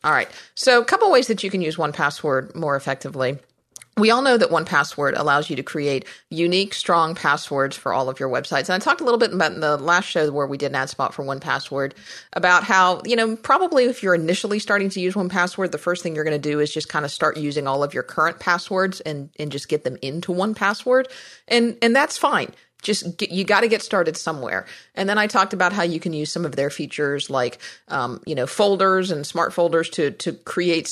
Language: English